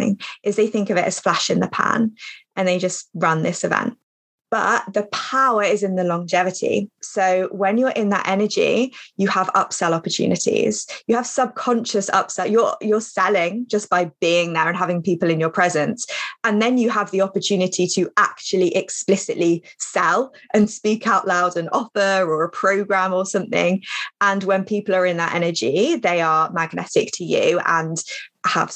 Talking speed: 175 wpm